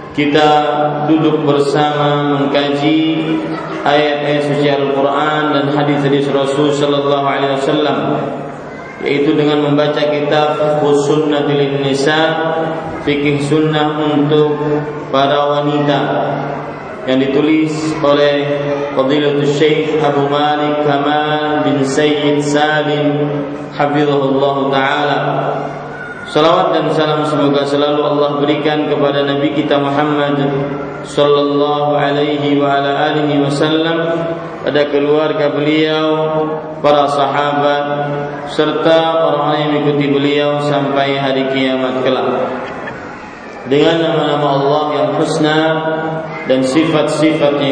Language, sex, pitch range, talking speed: Malay, male, 145-150 Hz, 95 wpm